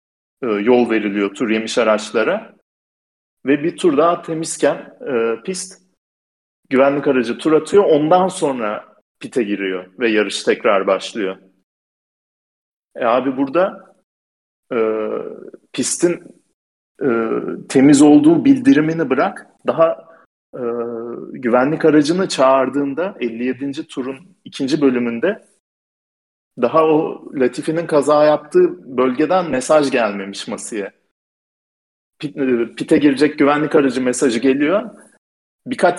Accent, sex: native, male